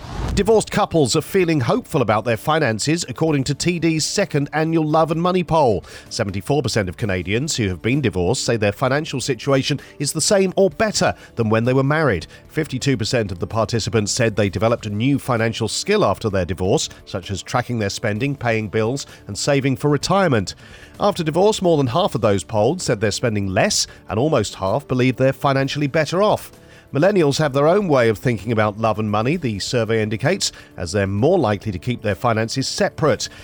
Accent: British